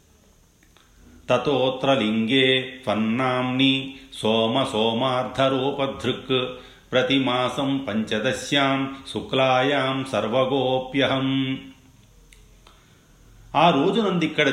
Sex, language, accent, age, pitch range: male, Telugu, native, 40-59, 95-130 Hz